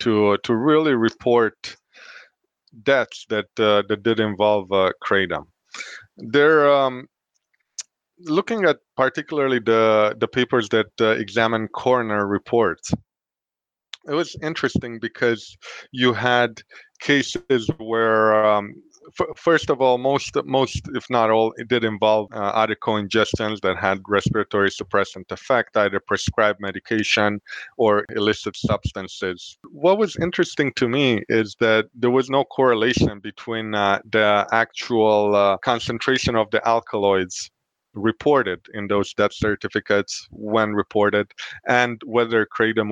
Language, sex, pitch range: English, male, 105-125 Hz